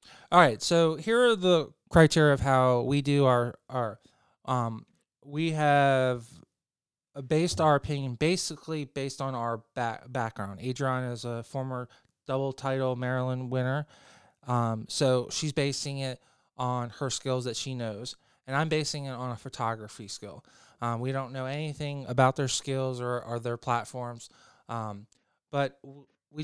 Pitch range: 120-145 Hz